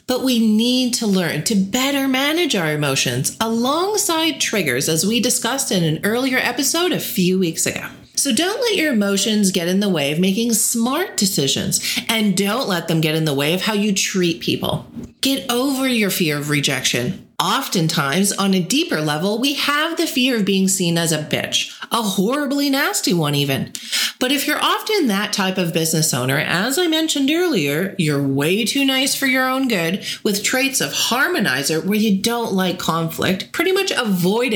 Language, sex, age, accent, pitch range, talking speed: English, female, 40-59, American, 170-250 Hz, 190 wpm